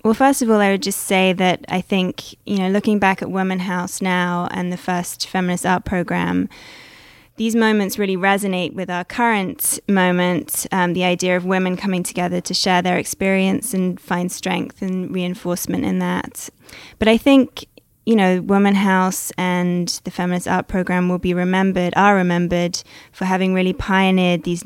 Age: 20-39